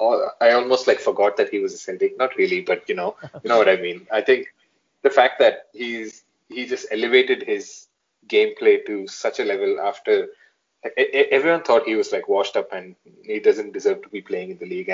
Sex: male